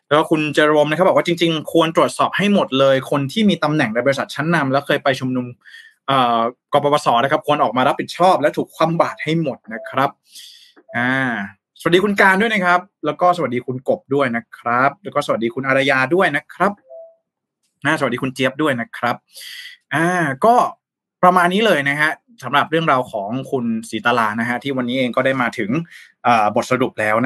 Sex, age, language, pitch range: male, 20-39, Thai, 140-190 Hz